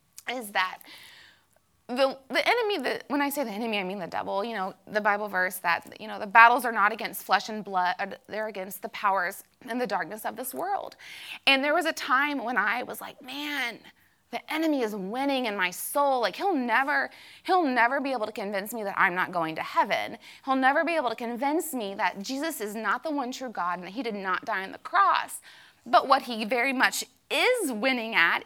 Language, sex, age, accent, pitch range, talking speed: English, female, 20-39, American, 200-275 Hz, 225 wpm